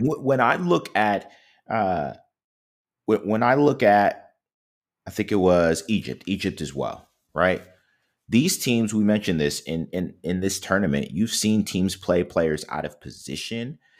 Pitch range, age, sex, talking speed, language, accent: 90-130 Hz, 30-49, male, 155 wpm, English, American